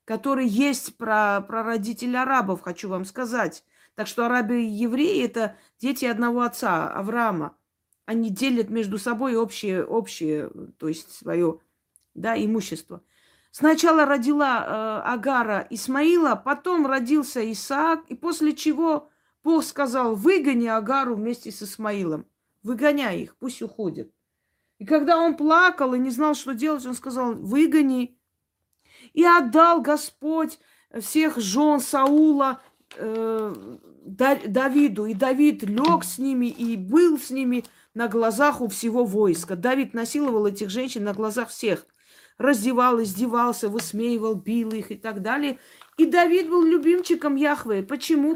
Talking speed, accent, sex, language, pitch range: 135 wpm, native, female, Russian, 225-290 Hz